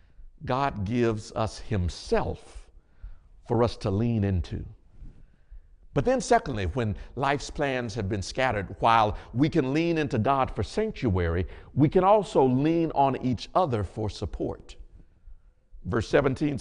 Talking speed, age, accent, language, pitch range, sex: 135 wpm, 50-69, American, English, 100-155 Hz, male